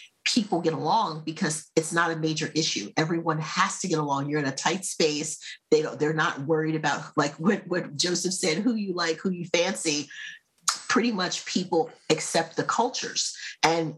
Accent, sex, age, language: American, female, 40-59, English